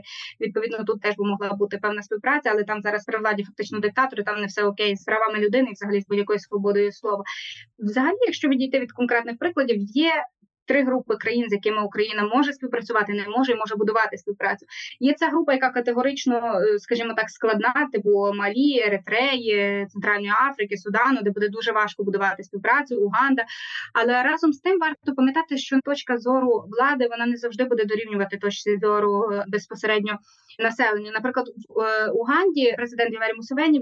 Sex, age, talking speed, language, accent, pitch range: female, 20-39, 165 wpm, Ukrainian, native, 210-255 Hz